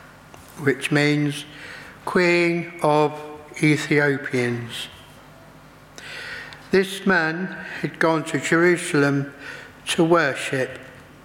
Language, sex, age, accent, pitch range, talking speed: English, male, 60-79, British, 140-185 Hz, 70 wpm